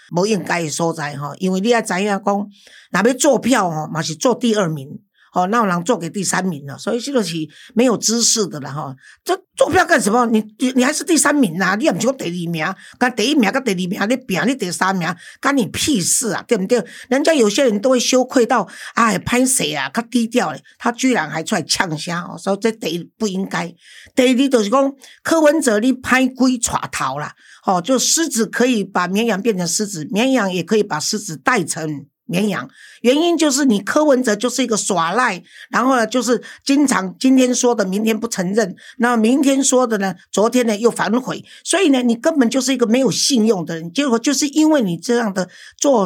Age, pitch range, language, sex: 50-69, 185-255 Hz, Chinese, female